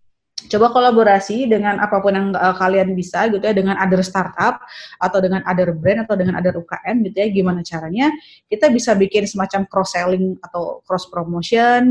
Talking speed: 160 wpm